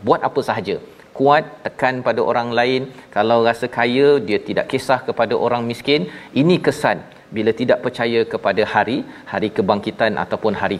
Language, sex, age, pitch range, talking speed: Malayalam, male, 40-59, 110-135 Hz, 155 wpm